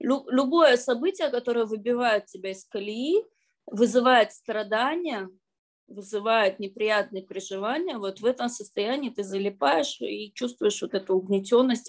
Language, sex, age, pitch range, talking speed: Russian, female, 20-39, 195-245 Hz, 115 wpm